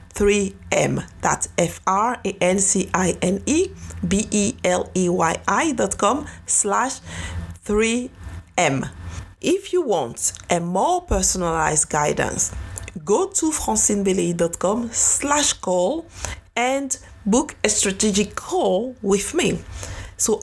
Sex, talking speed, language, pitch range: female, 75 wpm, English, 180-280 Hz